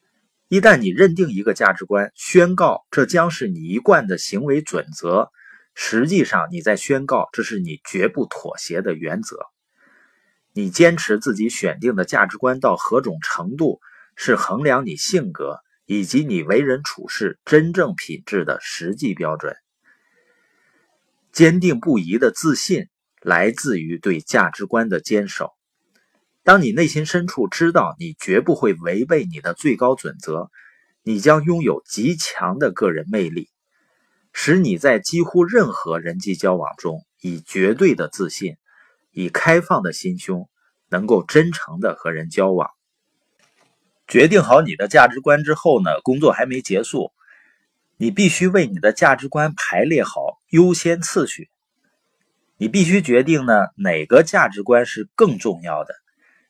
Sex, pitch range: male, 130-190 Hz